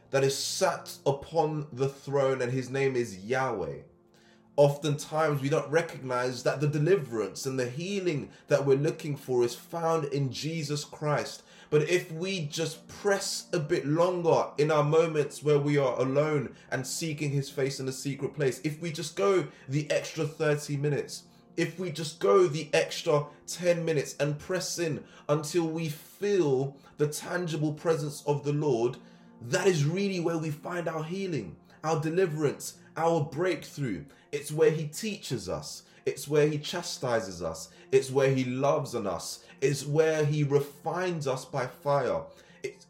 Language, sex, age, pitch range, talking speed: English, male, 20-39, 140-165 Hz, 165 wpm